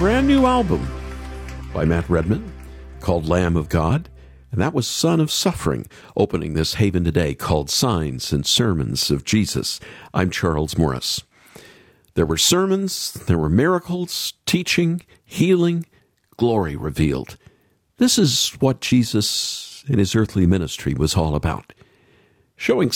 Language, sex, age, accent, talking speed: English, male, 50-69, American, 135 wpm